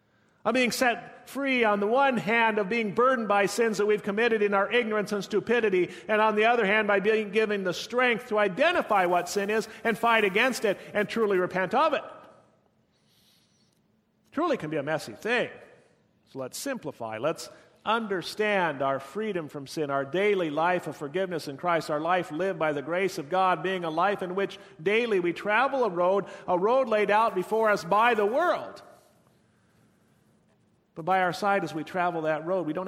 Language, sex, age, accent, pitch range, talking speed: English, male, 40-59, American, 155-205 Hz, 190 wpm